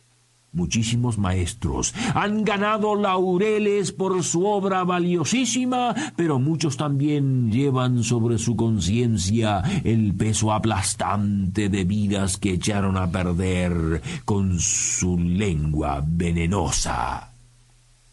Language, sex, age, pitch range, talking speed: Spanish, male, 50-69, 95-145 Hz, 95 wpm